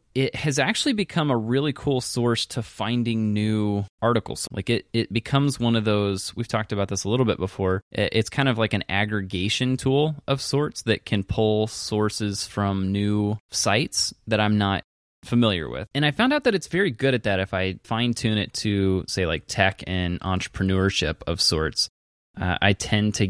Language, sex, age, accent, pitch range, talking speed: English, male, 20-39, American, 95-115 Hz, 195 wpm